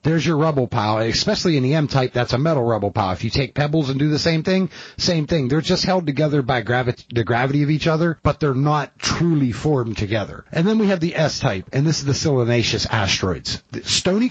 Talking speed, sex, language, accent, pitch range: 230 wpm, male, English, American, 120-170 Hz